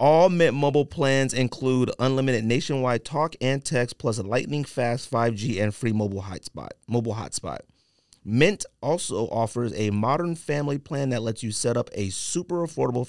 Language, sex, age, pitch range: English, male, 30-49, 115-140 Hz